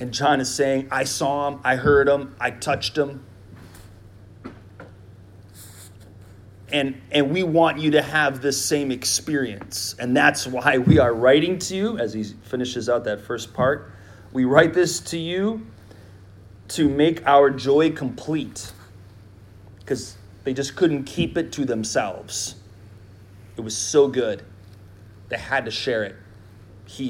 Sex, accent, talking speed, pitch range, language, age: male, American, 145 wpm, 100-140 Hz, English, 30-49